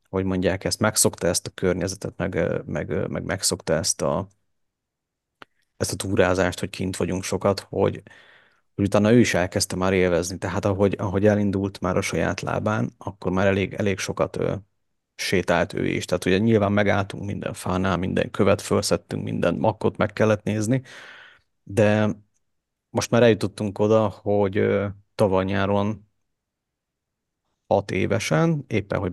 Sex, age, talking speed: male, 30-49, 140 wpm